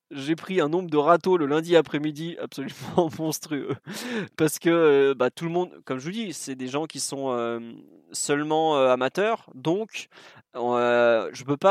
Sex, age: male, 20-39